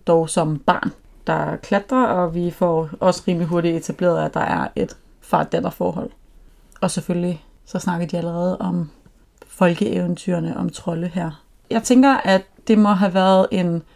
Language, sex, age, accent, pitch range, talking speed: Danish, female, 30-49, native, 165-200 Hz, 155 wpm